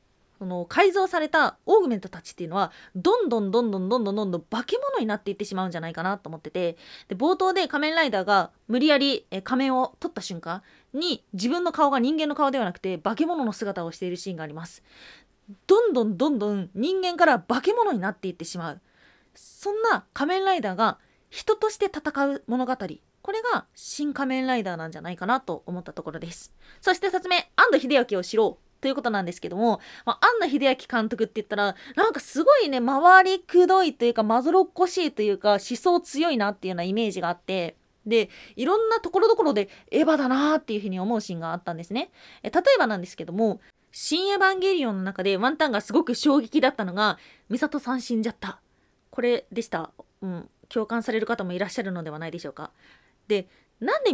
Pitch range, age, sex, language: 190-305 Hz, 20-39, female, Japanese